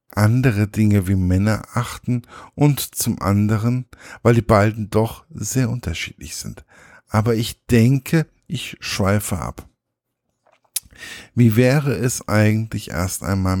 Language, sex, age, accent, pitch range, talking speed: German, male, 50-69, German, 100-130 Hz, 120 wpm